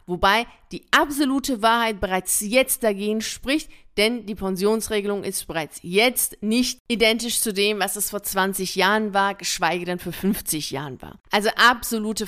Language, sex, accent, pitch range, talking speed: German, female, German, 195-245 Hz, 155 wpm